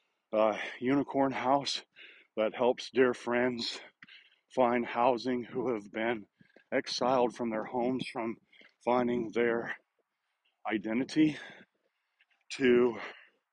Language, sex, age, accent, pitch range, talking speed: English, male, 40-59, American, 120-135 Hz, 95 wpm